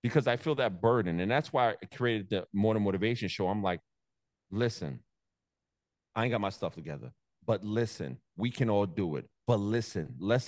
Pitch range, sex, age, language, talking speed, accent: 95-120 Hz, male, 30-49, English, 190 wpm, American